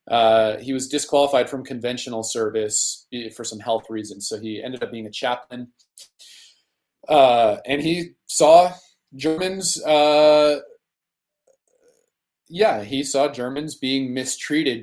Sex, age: male, 30-49